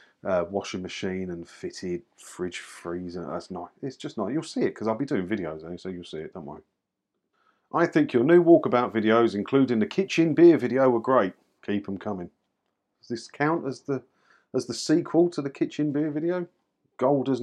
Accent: British